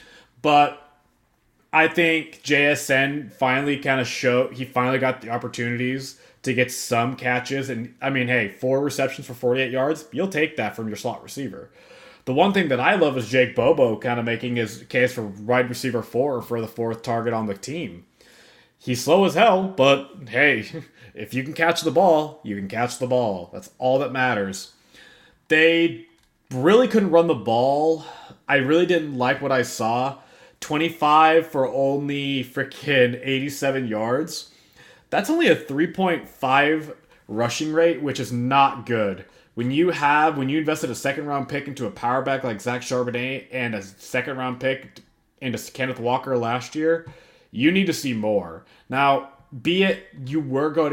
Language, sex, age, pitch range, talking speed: English, male, 20-39, 120-150 Hz, 170 wpm